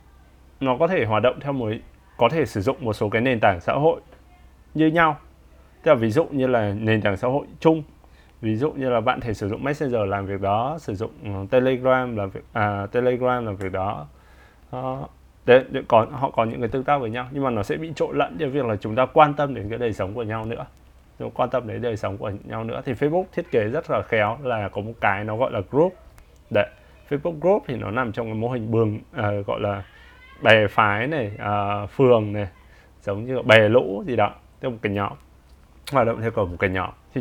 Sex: male